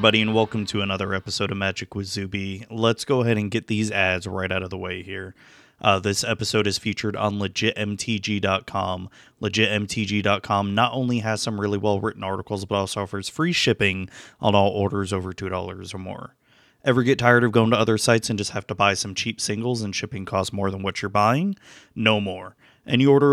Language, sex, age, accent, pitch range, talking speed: English, male, 20-39, American, 100-120 Hz, 205 wpm